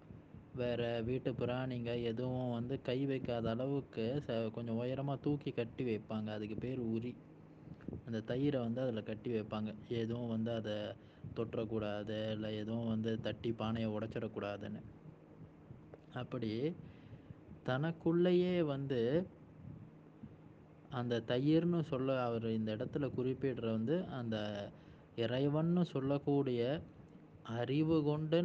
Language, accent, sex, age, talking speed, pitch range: Tamil, native, male, 20-39, 100 wpm, 115-150 Hz